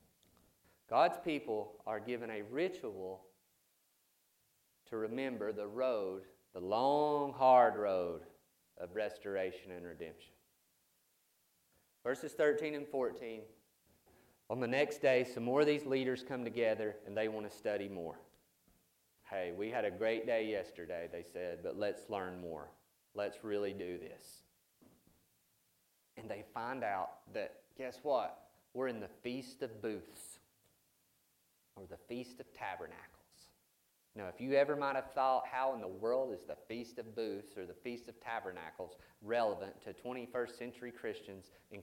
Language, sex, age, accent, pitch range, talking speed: English, male, 30-49, American, 110-165 Hz, 145 wpm